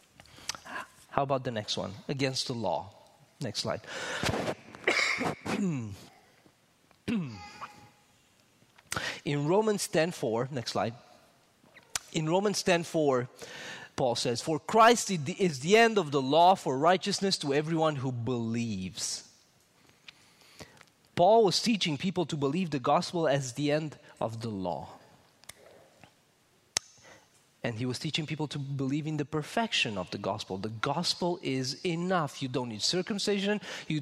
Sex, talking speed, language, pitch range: male, 125 wpm, English, 135-185 Hz